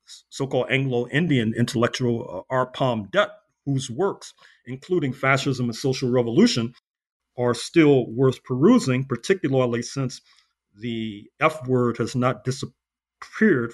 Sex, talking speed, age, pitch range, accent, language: male, 110 wpm, 50-69, 120-150 Hz, American, English